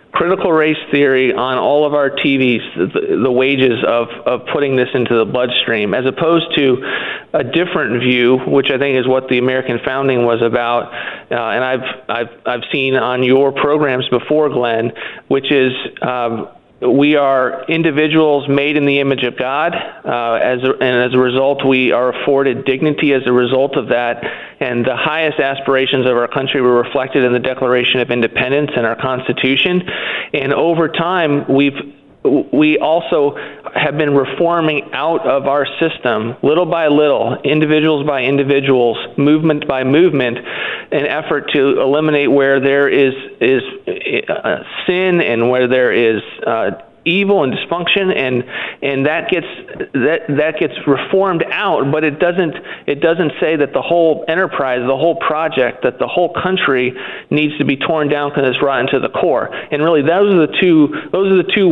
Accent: American